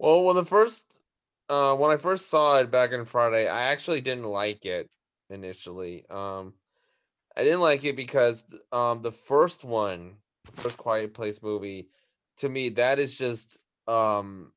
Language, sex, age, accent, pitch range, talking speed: English, male, 20-39, American, 100-125 Hz, 165 wpm